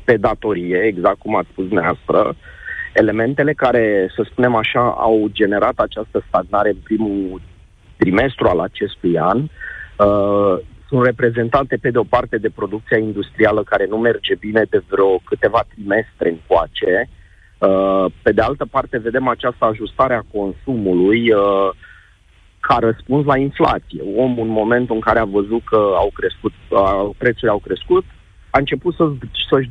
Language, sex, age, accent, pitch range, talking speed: Romanian, male, 30-49, native, 105-135 Hz, 150 wpm